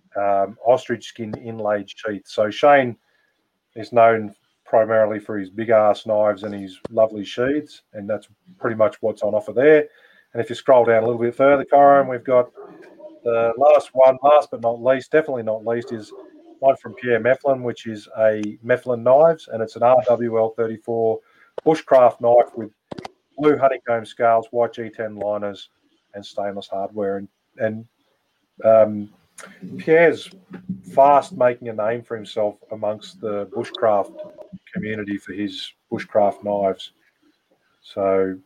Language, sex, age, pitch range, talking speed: English, male, 30-49, 110-135 Hz, 150 wpm